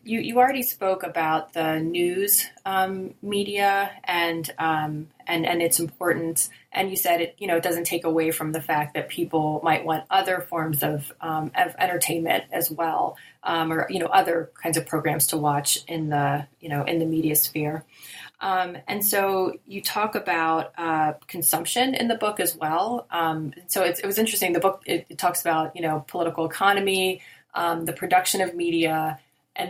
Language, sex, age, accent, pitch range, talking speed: English, female, 20-39, American, 160-185 Hz, 190 wpm